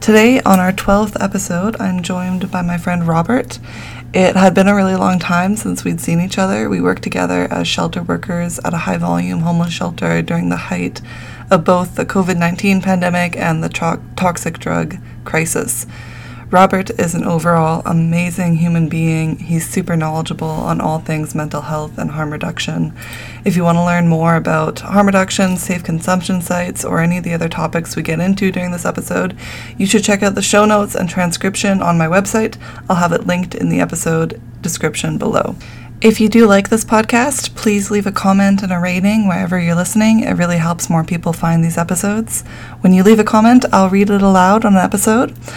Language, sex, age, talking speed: English, female, 20-39, 190 wpm